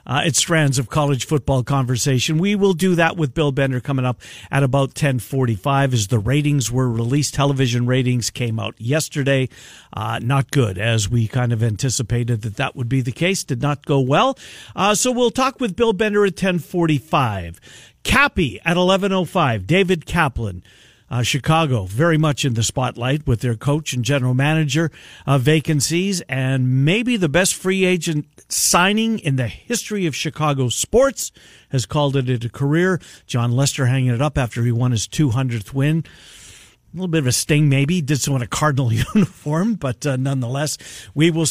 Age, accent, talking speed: 50-69, American, 180 wpm